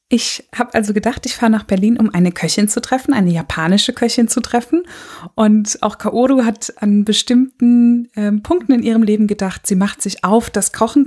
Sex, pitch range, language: female, 200-235 Hz, German